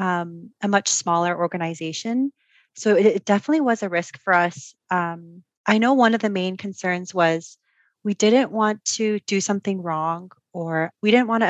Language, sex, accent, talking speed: English, female, American, 185 wpm